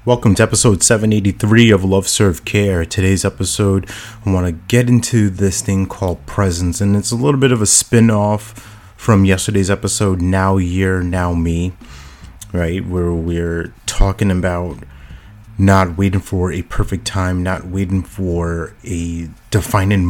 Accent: American